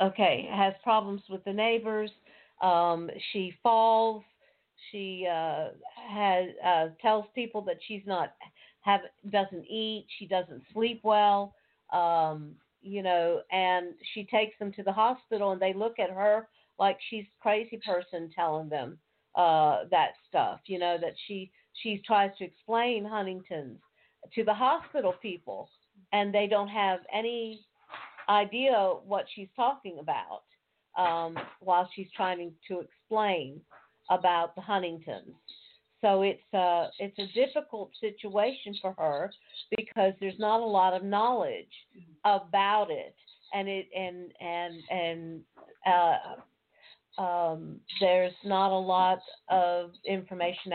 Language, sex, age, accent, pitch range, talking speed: English, female, 50-69, American, 180-215 Hz, 130 wpm